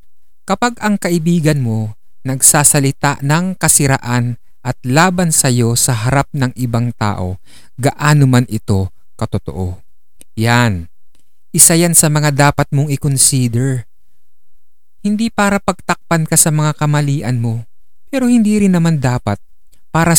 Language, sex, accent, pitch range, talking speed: Filipino, male, native, 110-165 Hz, 120 wpm